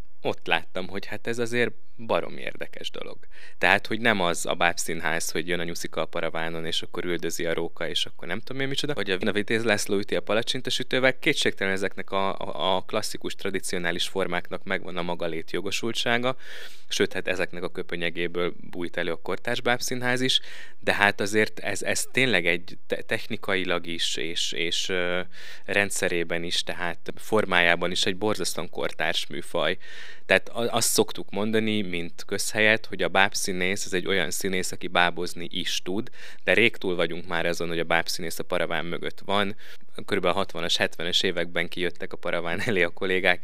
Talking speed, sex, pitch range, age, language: 165 wpm, male, 85-105 Hz, 20-39, Hungarian